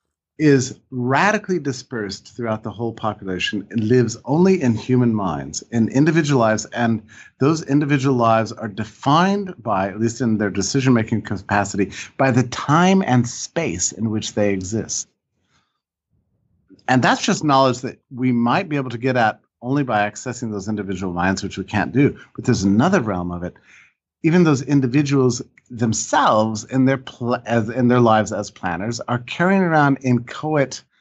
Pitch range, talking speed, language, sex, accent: 110-140 Hz, 160 wpm, English, male, American